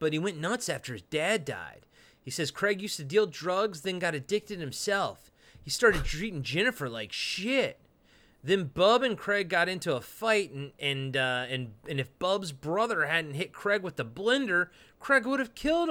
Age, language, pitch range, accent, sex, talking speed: 30-49, English, 135-205 Hz, American, male, 190 wpm